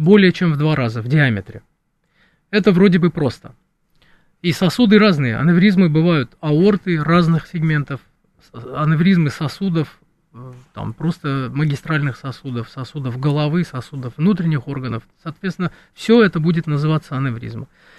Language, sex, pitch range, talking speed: Russian, male, 140-175 Hz, 120 wpm